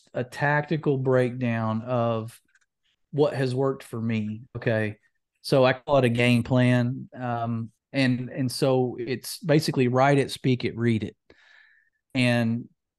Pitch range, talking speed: 120-145 Hz, 140 wpm